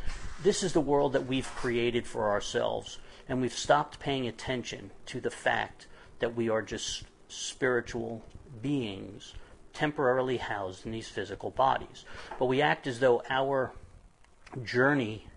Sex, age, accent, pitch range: male, 50-69, American, 110-140 Hz